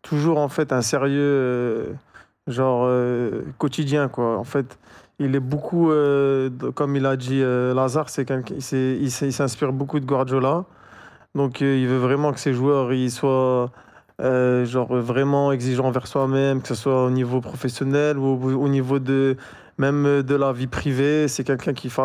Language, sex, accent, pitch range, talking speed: French, male, French, 130-145 Hz, 175 wpm